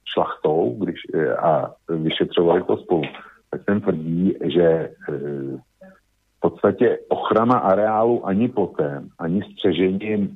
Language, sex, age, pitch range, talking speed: Slovak, male, 50-69, 85-105 Hz, 105 wpm